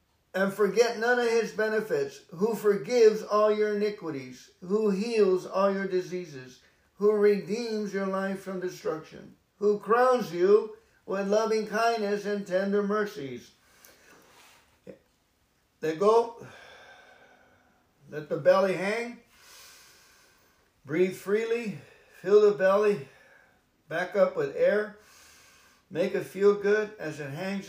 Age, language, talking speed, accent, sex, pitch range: 60-79, English, 115 wpm, American, male, 180-215 Hz